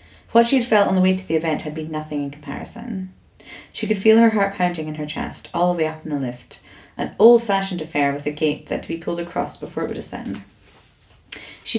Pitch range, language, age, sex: 145-210 Hz, English, 30-49, female